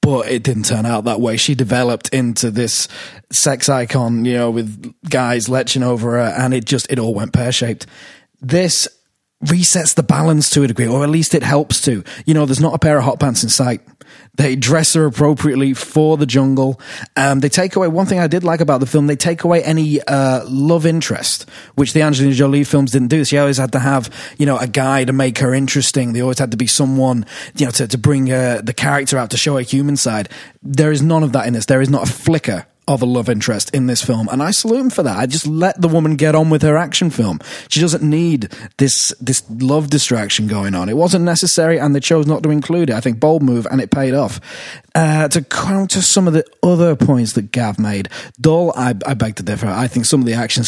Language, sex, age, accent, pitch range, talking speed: English, male, 20-39, British, 125-155 Hz, 240 wpm